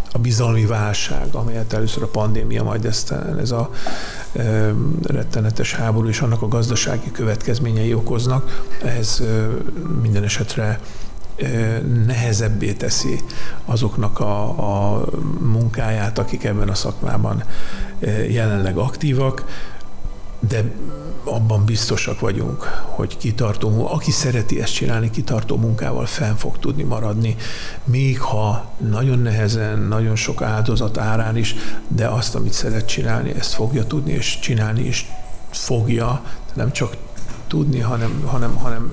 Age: 50-69